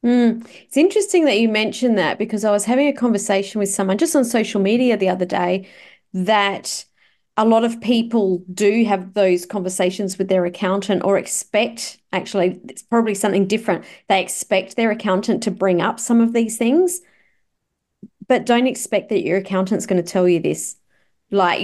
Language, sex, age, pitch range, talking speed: English, female, 30-49, 185-220 Hz, 175 wpm